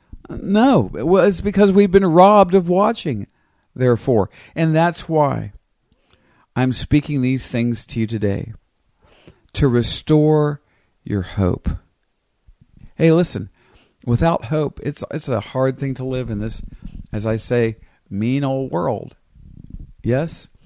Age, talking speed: 50-69, 125 wpm